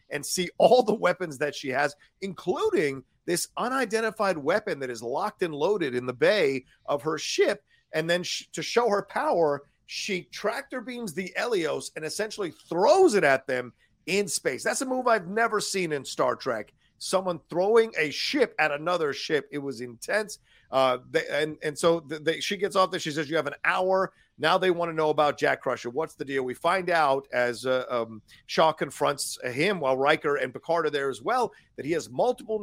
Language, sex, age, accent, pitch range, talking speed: English, male, 40-59, American, 140-190 Hz, 195 wpm